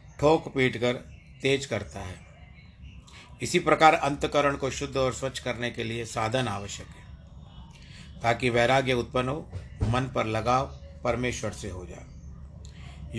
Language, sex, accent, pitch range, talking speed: Hindi, male, native, 100-145 Hz, 135 wpm